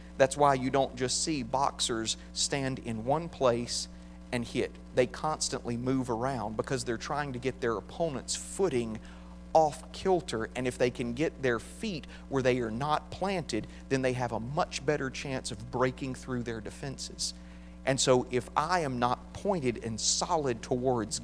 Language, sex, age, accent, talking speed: English, male, 40-59, American, 170 wpm